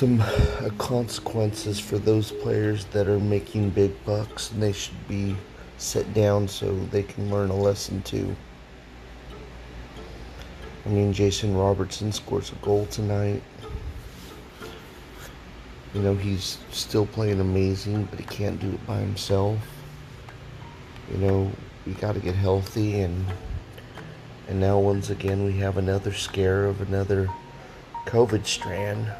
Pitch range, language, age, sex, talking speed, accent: 95-105 Hz, English, 30-49, male, 130 wpm, American